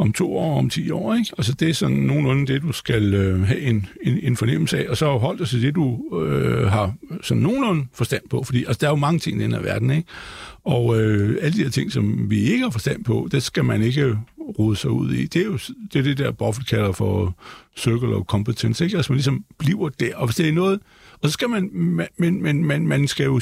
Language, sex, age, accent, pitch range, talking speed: Danish, male, 60-79, native, 115-170 Hz, 260 wpm